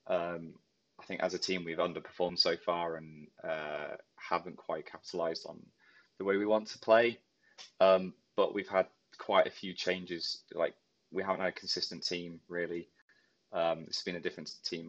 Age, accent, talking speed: 20-39, British, 175 wpm